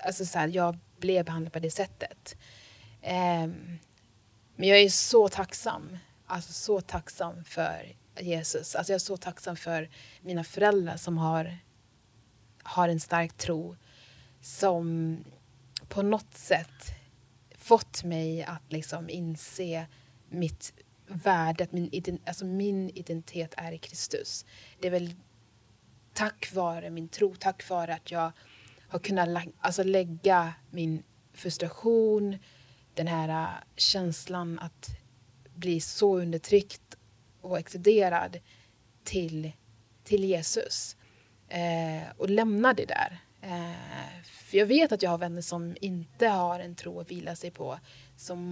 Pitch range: 145-185 Hz